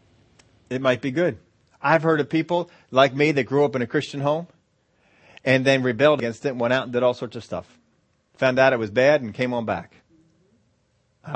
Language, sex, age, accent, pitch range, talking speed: English, male, 30-49, American, 115-150 Hz, 215 wpm